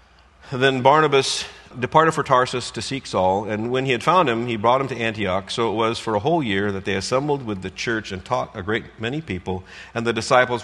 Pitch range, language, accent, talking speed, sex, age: 90-120 Hz, English, American, 230 wpm, male, 50-69